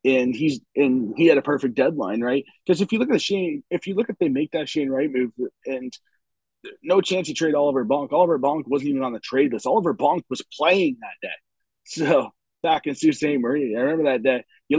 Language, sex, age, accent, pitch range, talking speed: English, male, 30-49, American, 130-195 Hz, 240 wpm